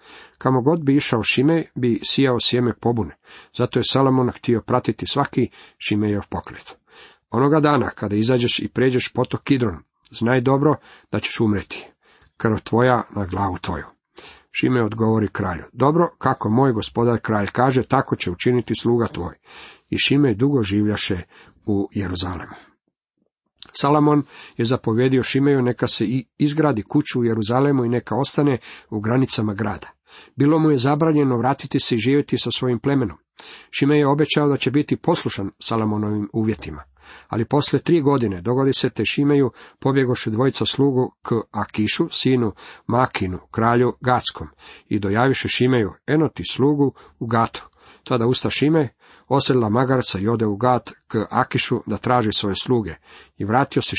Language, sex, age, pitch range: Croatian, male, 50-69, 110-135 Hz